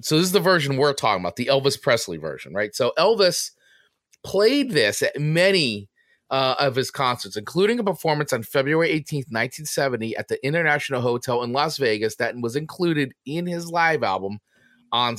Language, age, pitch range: English, 30-49, 115-145 Hz